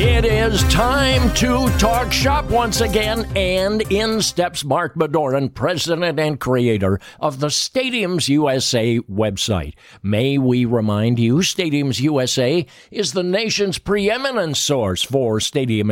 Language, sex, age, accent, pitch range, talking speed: English, male, 60-79, American, 115-170 Hz, 130 wpm